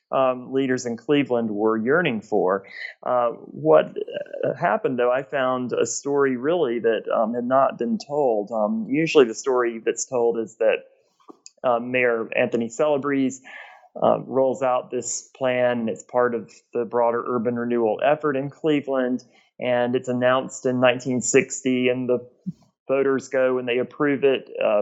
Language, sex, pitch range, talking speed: English, male, 120-135 Hz, 155 wpm